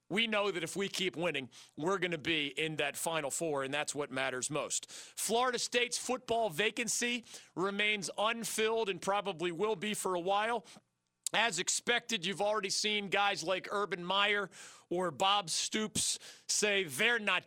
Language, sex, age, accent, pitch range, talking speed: English, male, 40-59, American, 165-215 Hz, 165 wpm